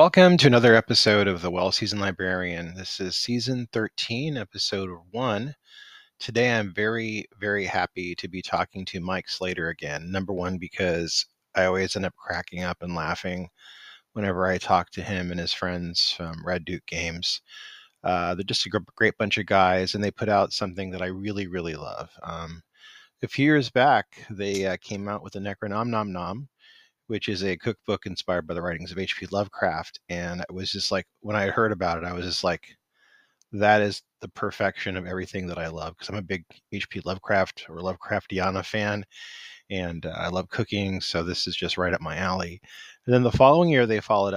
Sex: male